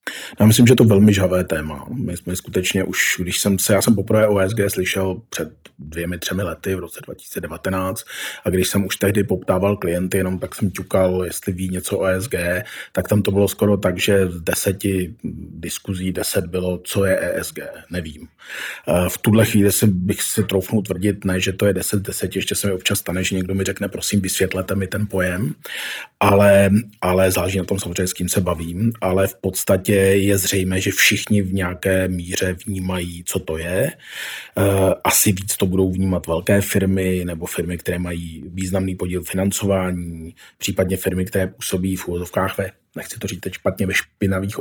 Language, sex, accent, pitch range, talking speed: Czech, male, native, 90-100 Hz, 190 wpm